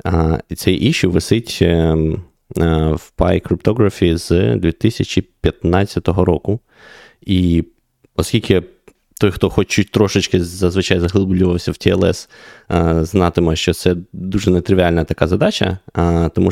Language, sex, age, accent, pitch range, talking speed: Ukrainian, male, 20-39, native, 85-100 Hz, 115 wpm